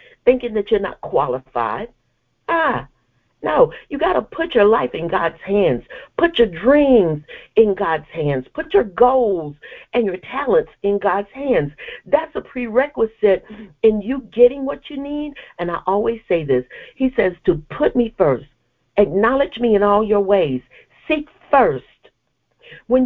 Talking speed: 155 wpm